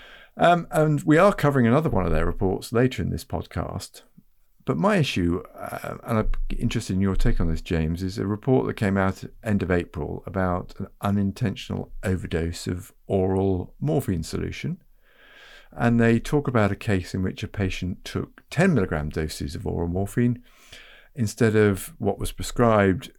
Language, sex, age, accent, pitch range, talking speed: English, male, 50-69, British, 90-120 Hz, 175 wpm